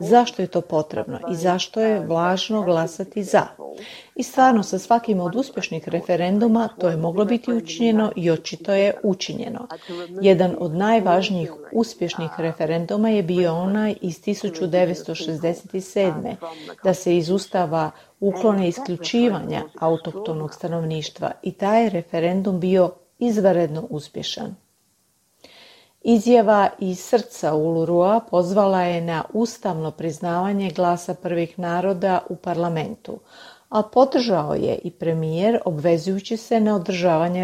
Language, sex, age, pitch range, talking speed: Croatian, female, 40-59, 170-210 Hz, 115 wpm